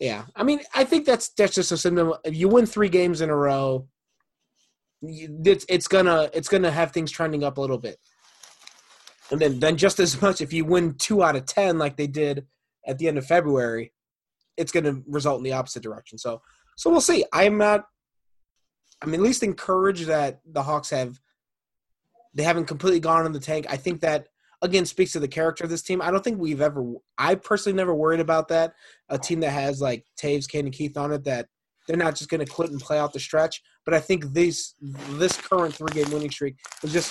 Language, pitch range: English, 140-175 Hz